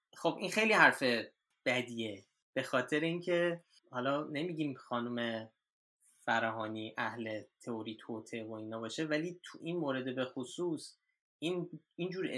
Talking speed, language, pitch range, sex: 125 wpm, Persian, 125-160 Hz, male